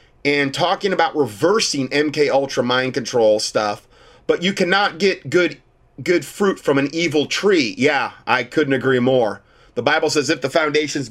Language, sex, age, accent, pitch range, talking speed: English, male, 30-49, American, 135-190 Hz, 165 wpm